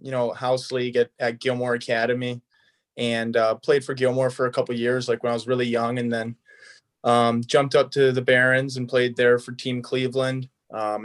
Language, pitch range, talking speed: English, 120-130 Hz, 210 wpm